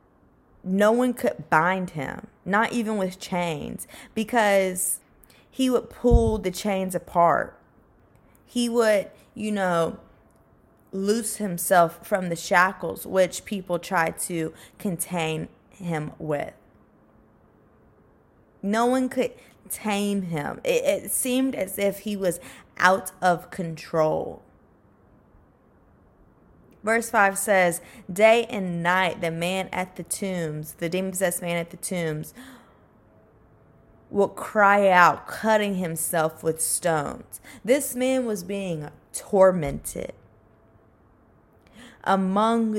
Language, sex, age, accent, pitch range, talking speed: English, female, 20-39, American, 160-205 Hz, 110 wpm